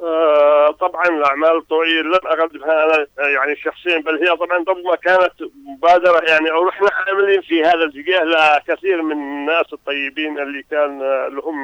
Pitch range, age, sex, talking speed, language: 140-165 Hz, 50-69, male, 150 wpm, Arabic